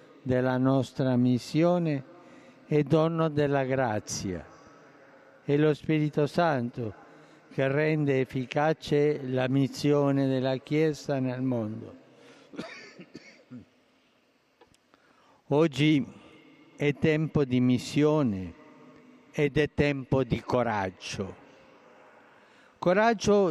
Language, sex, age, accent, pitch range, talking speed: Italian, male, 60-79, native, 130-170 Hz, 80 wpm